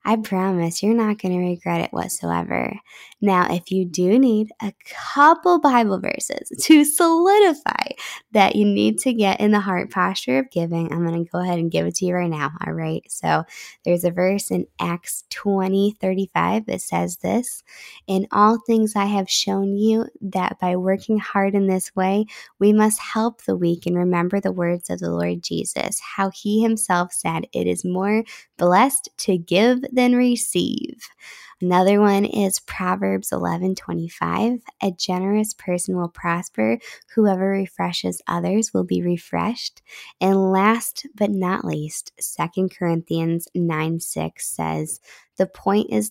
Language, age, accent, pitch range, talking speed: English, 10-29, American, 170-210 Hz, 165 wpm